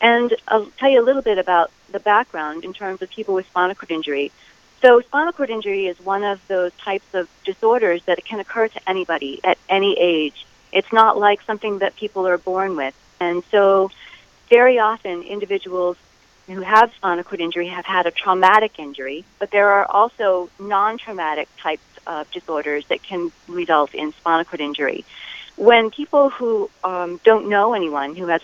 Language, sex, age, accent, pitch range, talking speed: English, female, 40-59, American, 170-215 Hz, 180 wpm